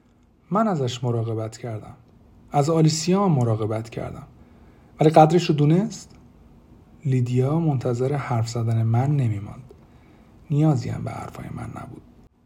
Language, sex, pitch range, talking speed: Persian, male, 115-140 Hz, 115 wpm